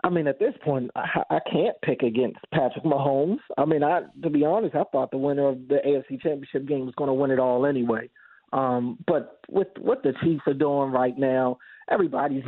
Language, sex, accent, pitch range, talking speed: English, male, American, 140-190 Hz, 215 wpm